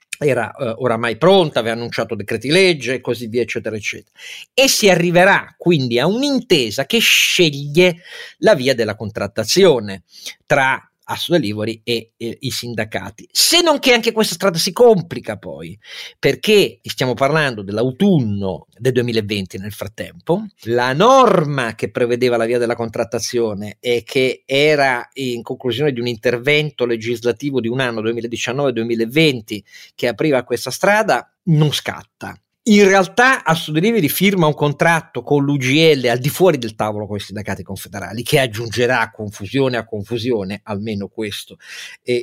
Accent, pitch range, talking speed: native, 110-170 Hz, 140 wpm